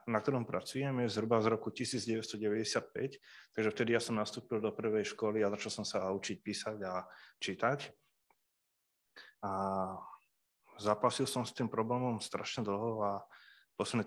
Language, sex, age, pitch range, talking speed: Slovak, male, 20-39, 105-125 Hz, 145 wpm